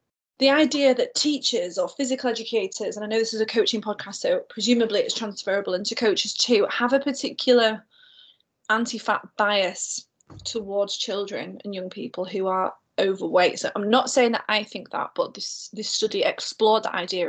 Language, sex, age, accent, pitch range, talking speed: English, female, 20-39, British, 200-240 Hz, 175 wpm